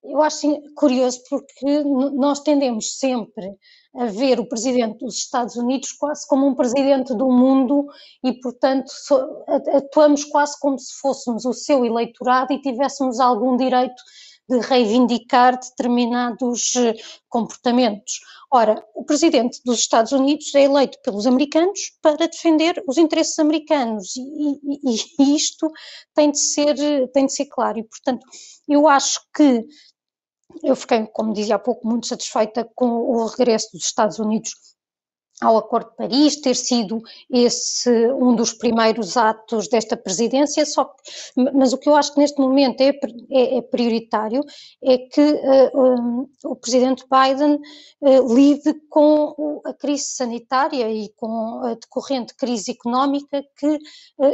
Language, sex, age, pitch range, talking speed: Portuguese, female, 20-39, 240-285 Hz, 140 wpm